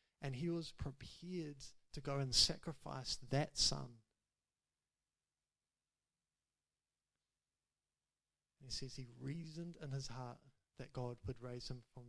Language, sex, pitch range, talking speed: English, male, 125-150 Hz, 115 wpm